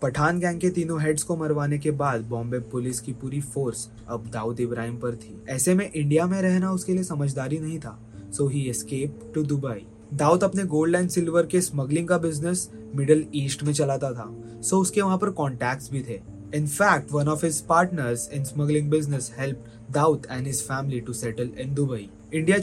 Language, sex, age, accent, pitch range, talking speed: Hindi, male, 20-39, native, 120-155 Hz, 190 wpm